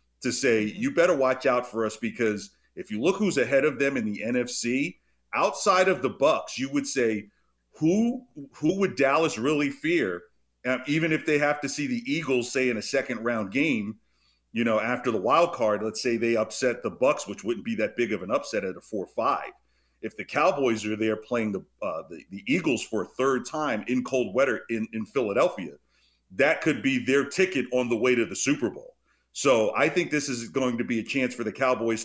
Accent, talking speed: American, 215 wpm